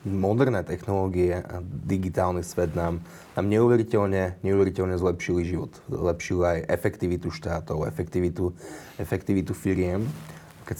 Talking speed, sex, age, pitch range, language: 105 wpm, male, 30-49, 85-100 Hz, Slovak